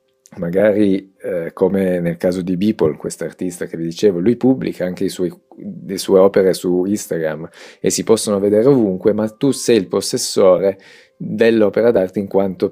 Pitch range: 95-125 Hz